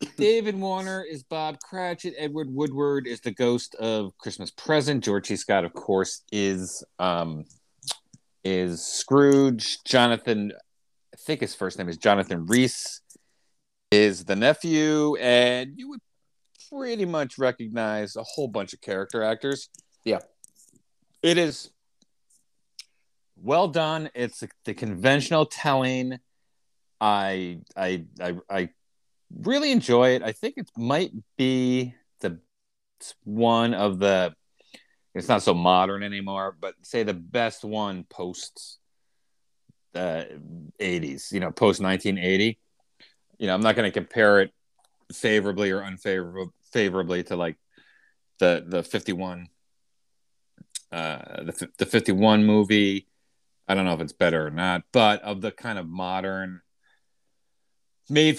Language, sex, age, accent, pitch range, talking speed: English, male, 40-59, American, 95-140 Hz, 135 wpm